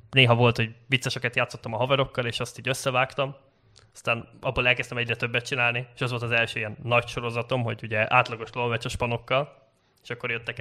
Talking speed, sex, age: 185 wpm, male, 20-39